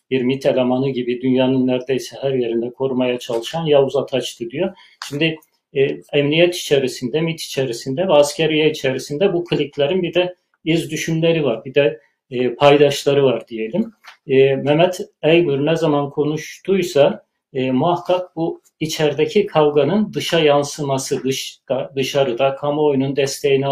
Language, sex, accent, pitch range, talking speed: Turkish, male, native, 130-160 Hz, 125 wpm